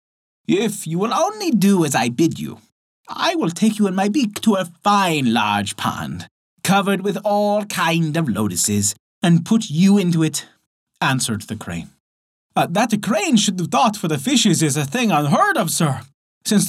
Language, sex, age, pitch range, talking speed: English, male, 30-49, 130-205 Hz, 185 wpm